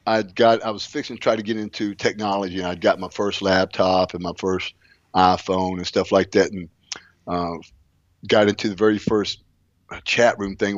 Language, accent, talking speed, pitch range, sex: English, American, 195 wpm, 95-115 Hz, male